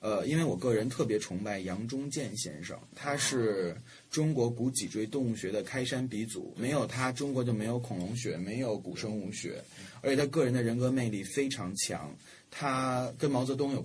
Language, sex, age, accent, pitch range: Chinese, male, 20-39, native, 115-145 Hz